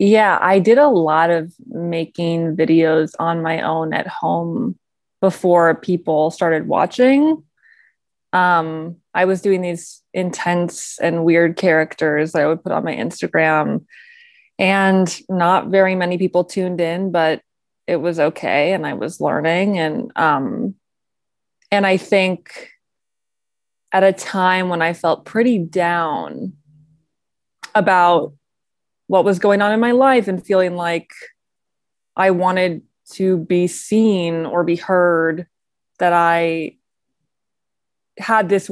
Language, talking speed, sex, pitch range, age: English, 130 wpm, female, 165-190 Hz, 20-39